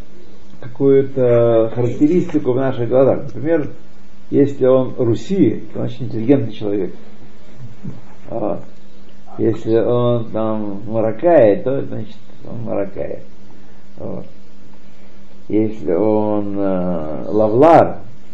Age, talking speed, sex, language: 50-69, 90 wpm, male, Russian